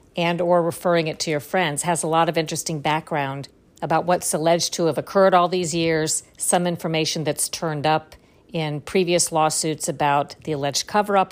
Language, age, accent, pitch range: English, 50-69, American, 160-195 Hz